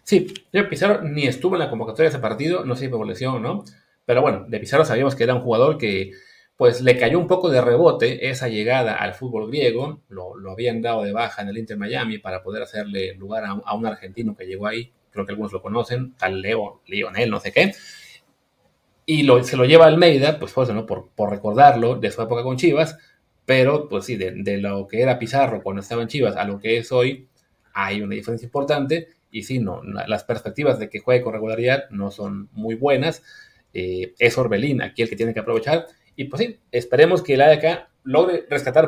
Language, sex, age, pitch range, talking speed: Spanish, male, 30-49, 105-145 Hz, 220 wpm